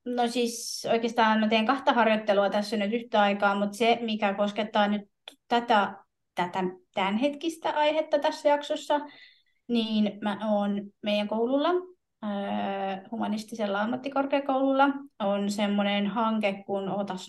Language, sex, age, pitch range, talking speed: Finnish, female, 20-39, 200-270 Hz, 120 wpm